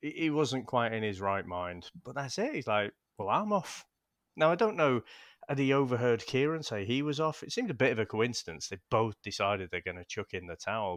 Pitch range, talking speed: 105-155 Hz, 240 wpm